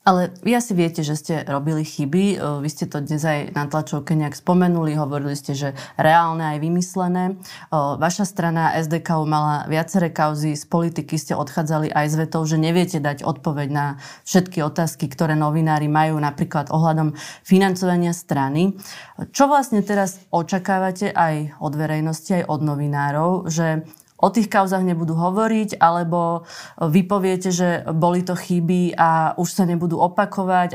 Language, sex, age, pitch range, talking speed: Slovak, female, 20-39, 160-185 Hz, 150 wpm